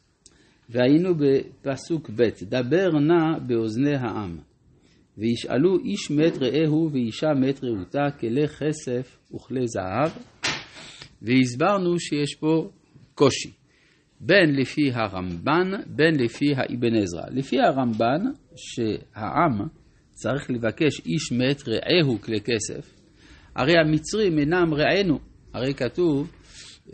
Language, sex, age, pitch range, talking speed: Hebrew, male, 60-79, 120-165 Hz, 100 wpm